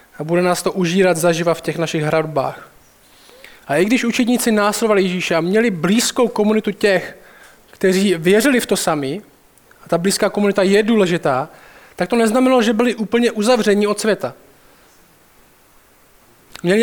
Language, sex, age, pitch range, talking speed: Czech, male, 20-39, 190-230 Hz, 150 wpm